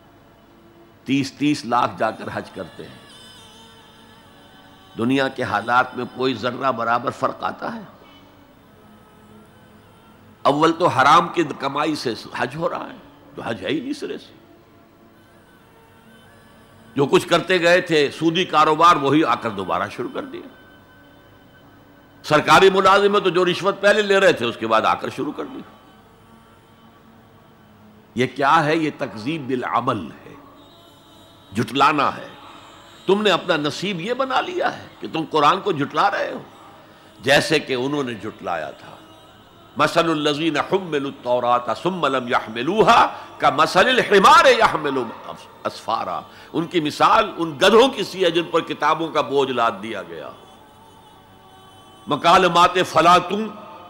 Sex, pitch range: male, 115-175 Hz